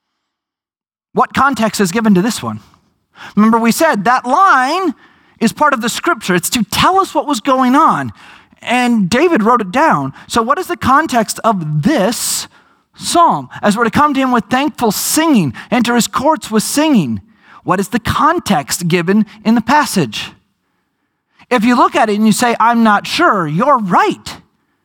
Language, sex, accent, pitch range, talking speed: English, male, American, 205-270 Hz, 175 wpm